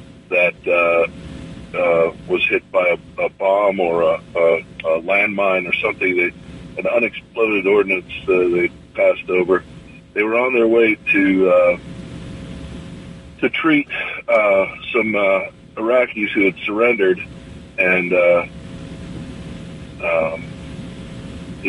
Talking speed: 105 wpm